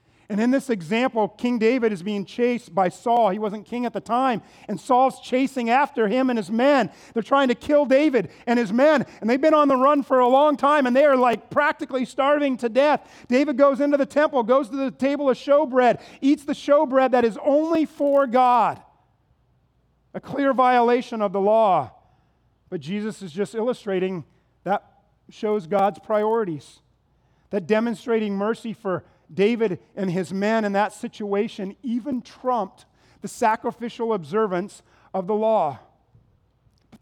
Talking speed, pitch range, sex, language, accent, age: 170 wpm, 190-255 Hz, male, English, American, 40-59